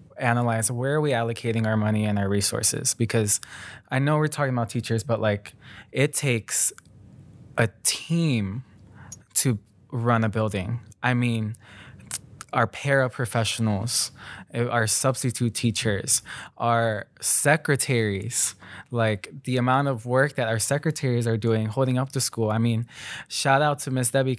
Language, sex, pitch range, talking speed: English, male, 110-130 Hz, 140 wpm